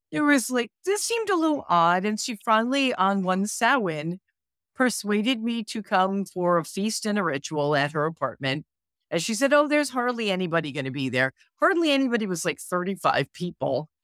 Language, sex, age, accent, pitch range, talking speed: English, female, 50-69, American, 155-225 Hz, 190 wpm